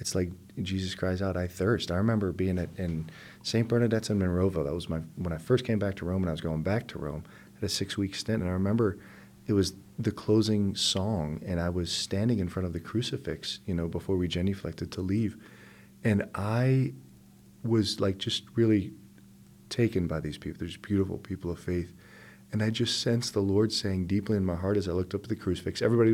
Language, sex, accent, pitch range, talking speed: English, male, American, 90-115 Hz, 220 wpm